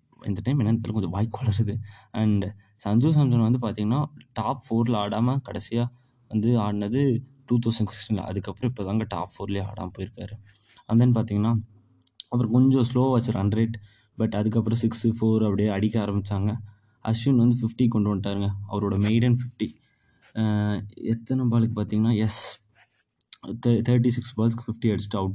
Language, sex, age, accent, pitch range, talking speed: Tamil, male, 20-39, native, 100-115 Hz, 140 wpm